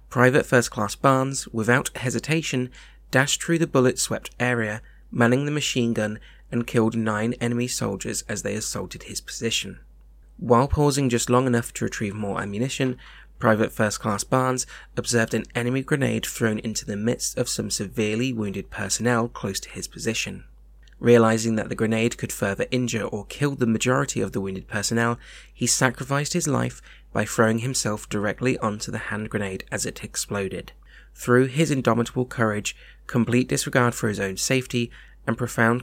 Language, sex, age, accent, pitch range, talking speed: English, male, 20-39, British, 105-125 Hz, 160 wpm